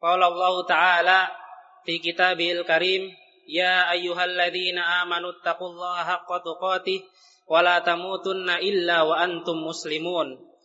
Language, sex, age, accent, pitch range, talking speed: Indonesian, male, 20-39, native, 170-185 Hz, 105 wpm